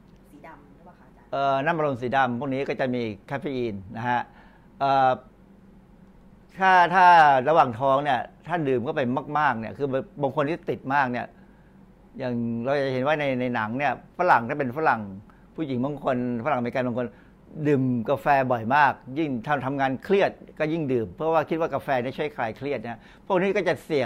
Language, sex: Thai, male